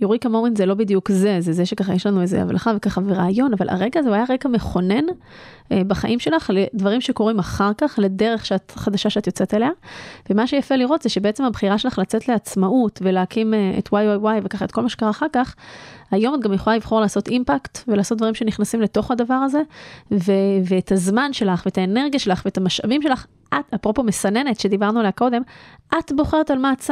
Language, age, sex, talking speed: Hebrew, 20-39, female, 175 wpm